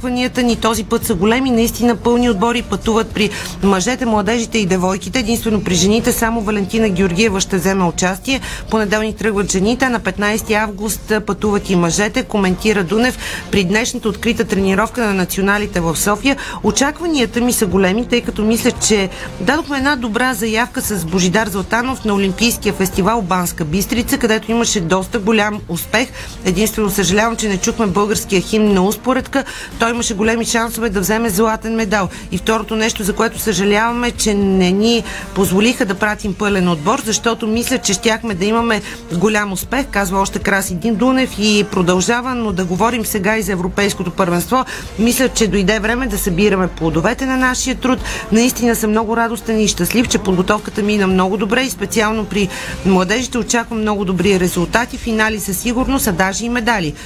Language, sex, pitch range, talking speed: Bulgarian, female, 195-230 Hz, 165 wpm